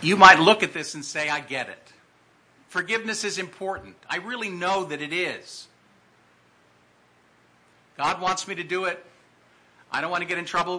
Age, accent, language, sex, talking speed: 50-69, American, English, male, 180 wpm